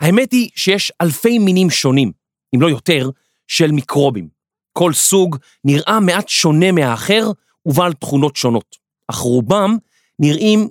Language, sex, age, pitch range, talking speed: Hebrew, male, 40-59, 135-195 Hz, 130 wpm